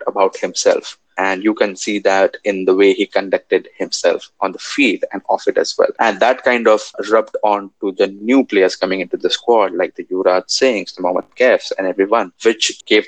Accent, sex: Indian, male